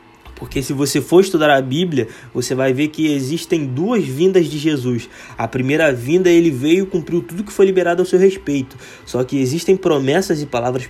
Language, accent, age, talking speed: Portuguese, Brazilian, 20-39, 200 wpm